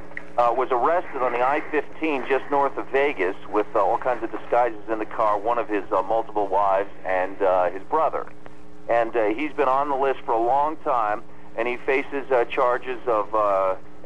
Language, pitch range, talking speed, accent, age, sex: English, 105-135 Hz, 200 wpm, American, 50-69, male